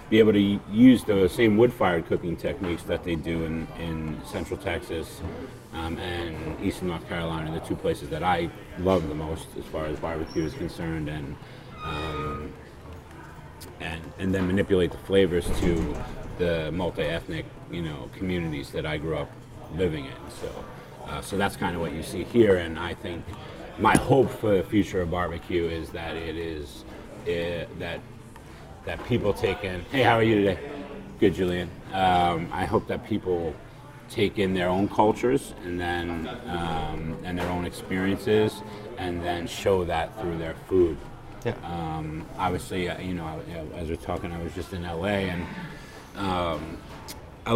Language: English